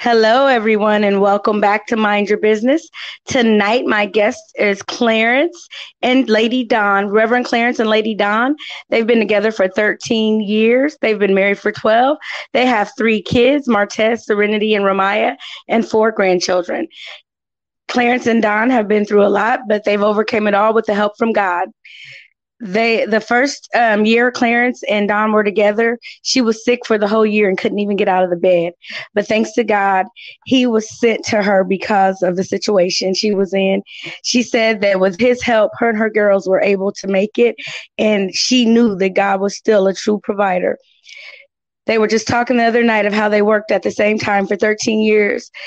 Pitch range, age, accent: 205-235 Hz, 20-39, American